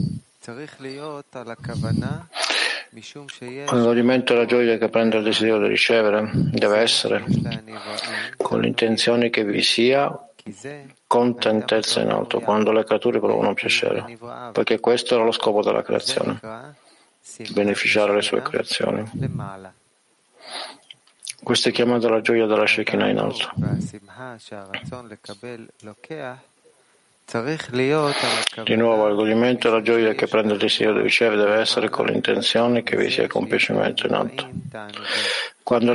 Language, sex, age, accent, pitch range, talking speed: Italian, male, 50-69, native, 110-140 Hz, 115 wpm